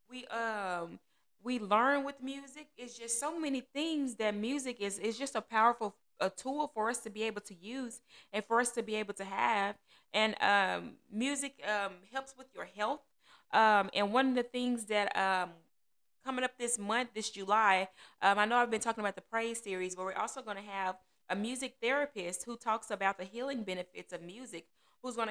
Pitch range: 195-245 Hz